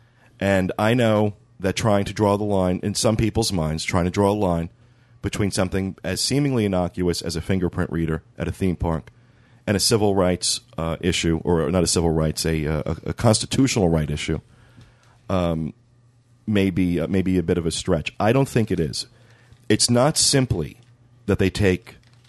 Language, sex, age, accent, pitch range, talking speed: English, male, 40-59, American, 90-120 Hz, 185 wpm